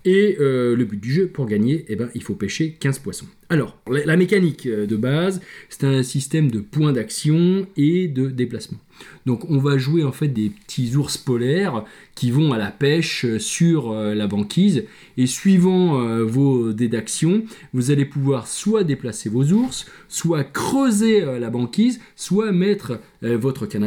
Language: French